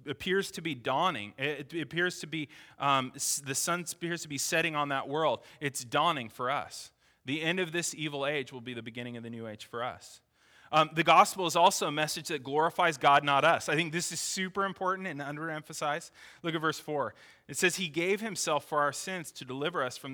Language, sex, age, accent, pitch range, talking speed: English, male, 20-39, American, 130-170 Hz, 220 wpm